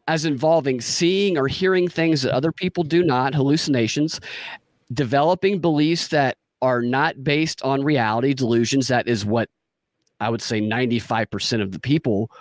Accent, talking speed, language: American, 150 wpm, English